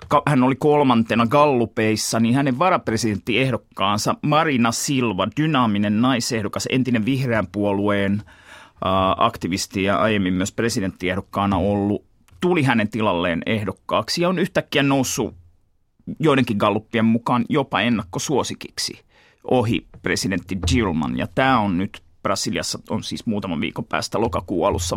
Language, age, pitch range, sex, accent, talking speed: Finnish, 30-49, 95-120 Hz, male, native, 115 wpm